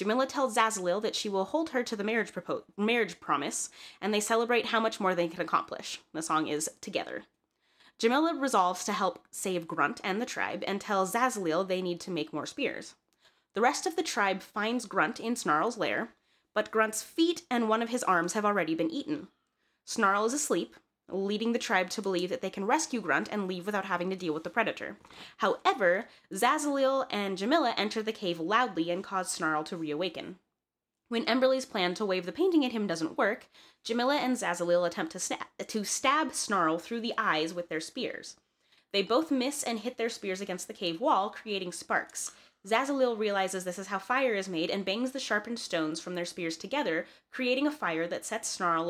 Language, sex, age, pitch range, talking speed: English, female, 20-39, 180-240 Hz, 200 wpm